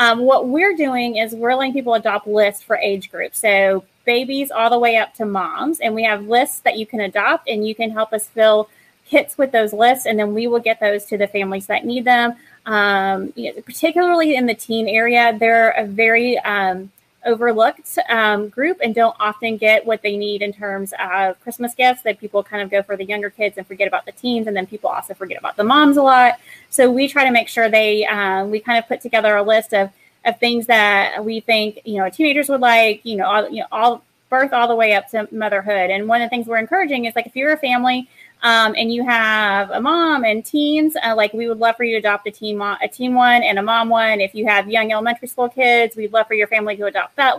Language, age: English, 20-39